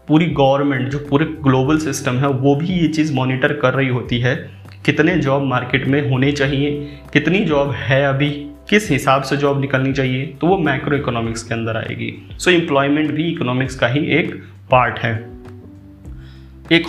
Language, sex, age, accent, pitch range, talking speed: Hindi, male, 30-49, native, 125-150 Hz, 180 wpm